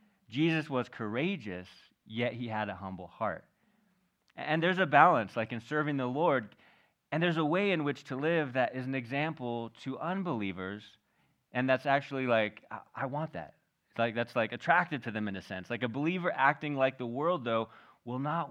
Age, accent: 30-49, American